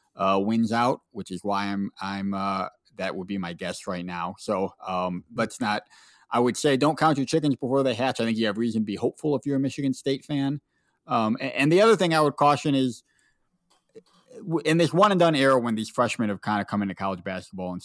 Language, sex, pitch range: English, male, 95-130 Hz